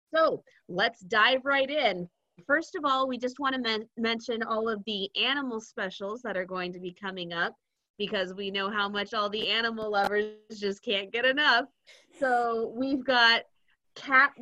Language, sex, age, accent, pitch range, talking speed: English, female, 30-49, American, 200-265 Hz, 175 wpm